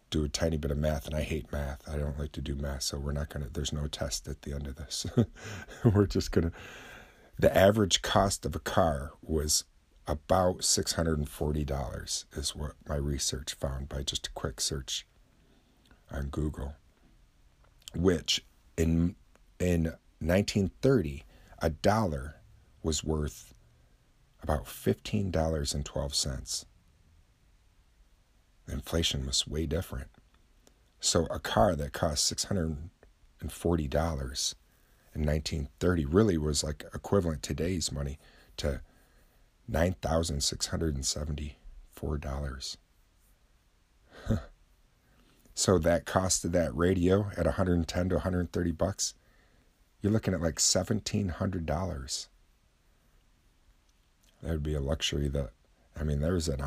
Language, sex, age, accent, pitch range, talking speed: English, male, 50-69, American, 70-90 Hz, 145 wpm